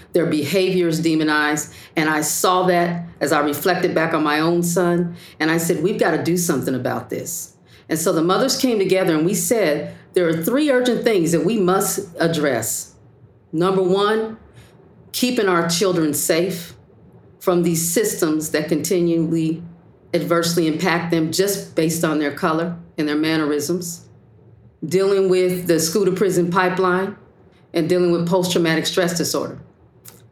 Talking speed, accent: 155 wpm, American